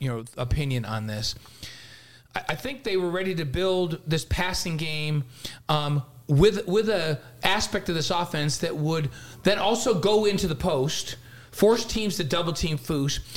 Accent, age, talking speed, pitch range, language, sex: American, 40-59, 165 wpm, 140-200 Hz, English, male